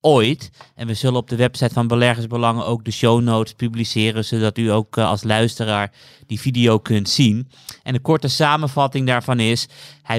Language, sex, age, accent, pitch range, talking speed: Dutch, male, 30-49, Dutch, 110-130 Hz, 190 wpm